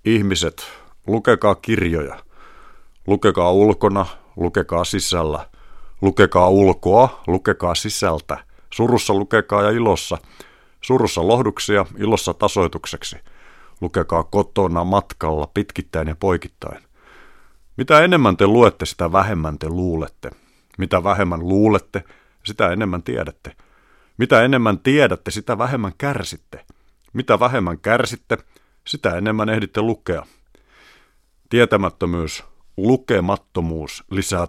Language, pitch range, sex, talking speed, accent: Finnish, 85-115 Hz, male, 95 wpm, native